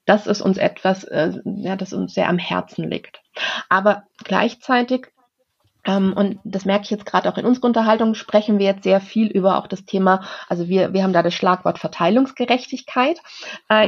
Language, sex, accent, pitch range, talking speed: German, female, German, 195-245 Hz, 185 wpm